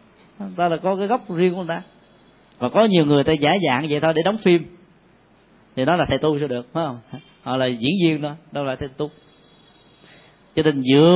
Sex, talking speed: male, 220 wpm